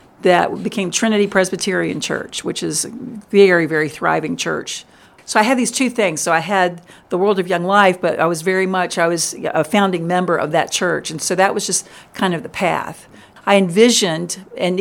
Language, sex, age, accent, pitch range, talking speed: English, female, 50-69, American, 175-210 Hz, 205 wpm